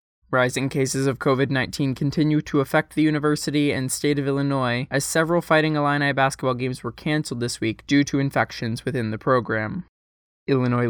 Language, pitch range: English, 120-145 Hz